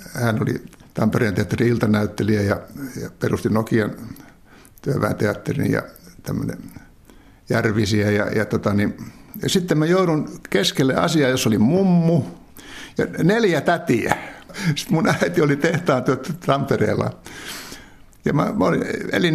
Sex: male